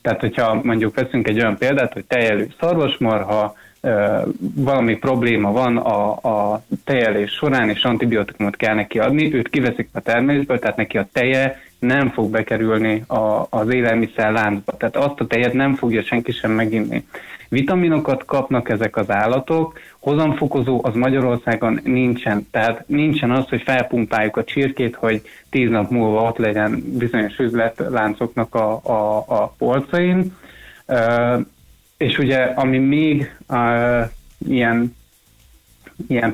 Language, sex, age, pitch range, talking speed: Hungarian, male, 20-39, 110-130 Hz, 135 wpm